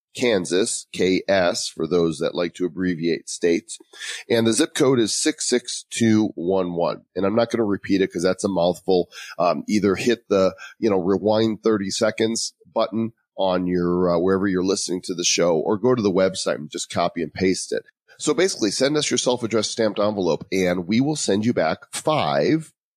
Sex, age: male, 30-49